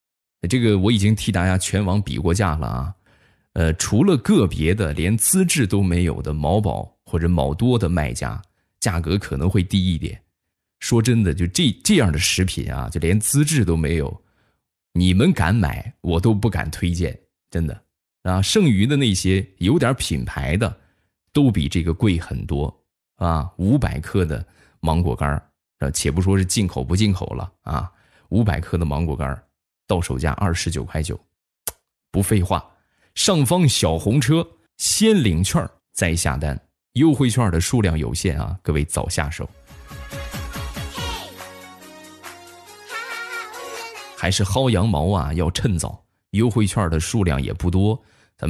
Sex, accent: male, native